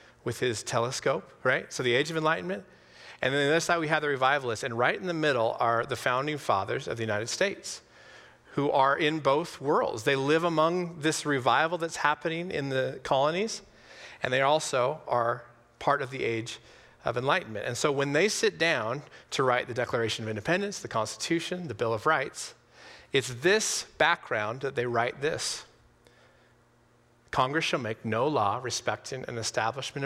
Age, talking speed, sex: 40-59, 180 wpm, male